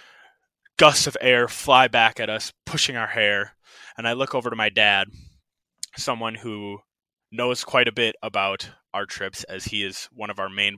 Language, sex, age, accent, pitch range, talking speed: English, male, 20-39, American, 100-125 Hz, 185 wpm